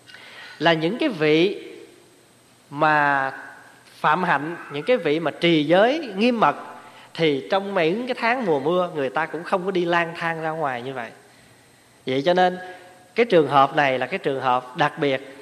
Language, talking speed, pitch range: Vietnamese, 185 wpm, 145-215 Hz